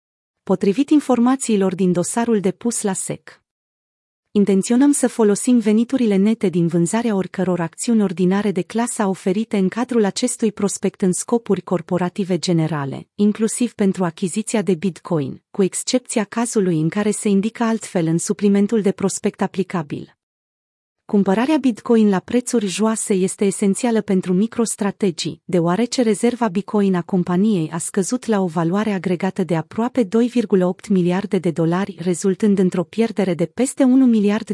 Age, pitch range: 30-49, 185-225 Hz